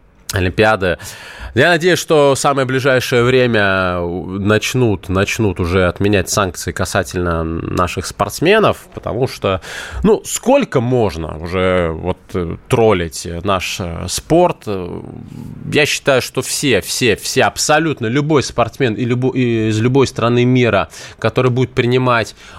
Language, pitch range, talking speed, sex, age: Russian, 100-140 Hz, 115 wpm, male, 20-39